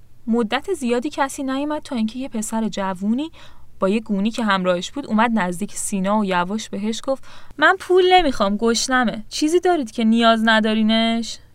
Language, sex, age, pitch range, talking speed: Persian, female, 10-29, 205-300 Hz, 160 wpm